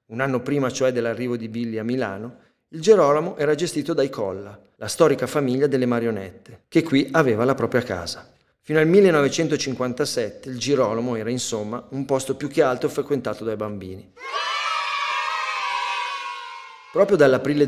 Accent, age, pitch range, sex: native, 40-59, 110-145 Hz, male